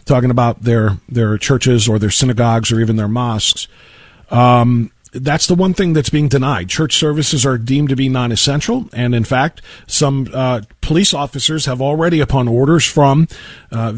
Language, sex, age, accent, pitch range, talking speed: English, male, 40-59, American, 120-160 Hz, 170 wpm